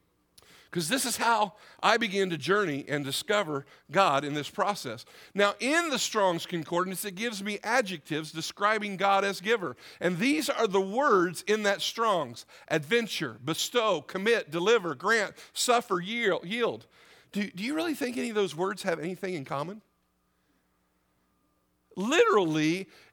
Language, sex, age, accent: English, male, 50-69, American